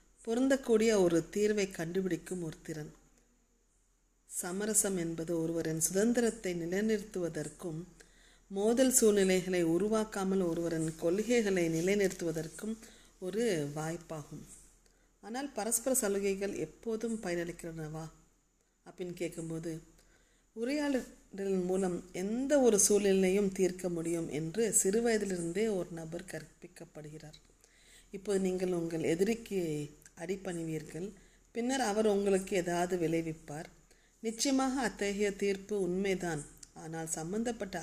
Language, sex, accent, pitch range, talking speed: Tamil, female, native, 165-215 Hz, 85 wpm